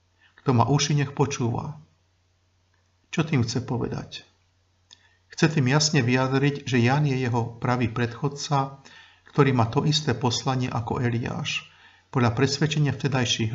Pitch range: 115-140 Hz